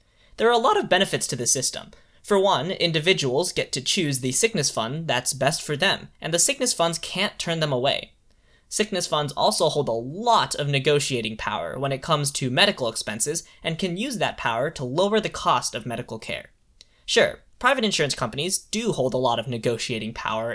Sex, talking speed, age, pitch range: male, 200 wpm, 10-29, 130-190 Hz